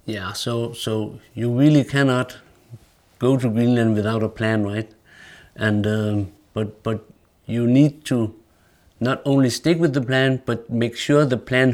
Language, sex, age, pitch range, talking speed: English, male, 50-69, 105-125 Hz, 160 wpm